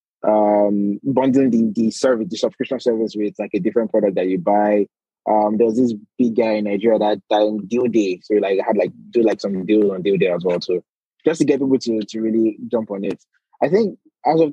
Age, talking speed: 20-39, 235 wpm